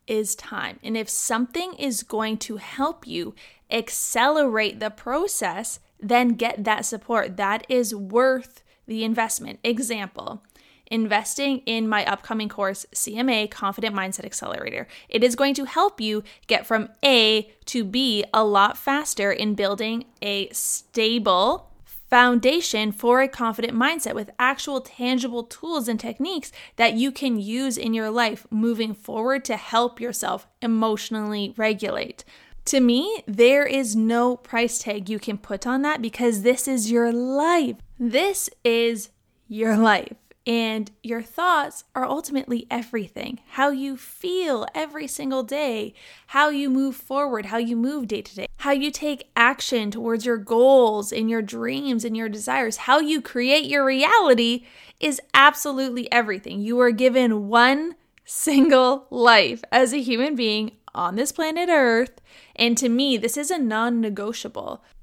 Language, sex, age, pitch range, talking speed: English, female, 20-39, 220-270 Hz, 150 wpm